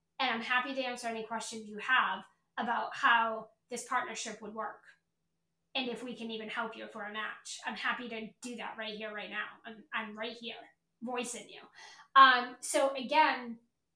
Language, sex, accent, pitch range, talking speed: English, female, American, 230-280 Hz, 185 wpm